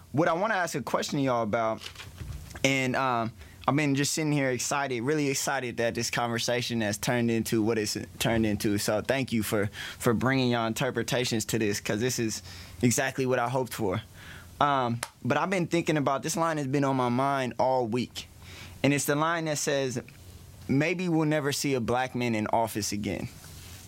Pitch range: 105-140 Hz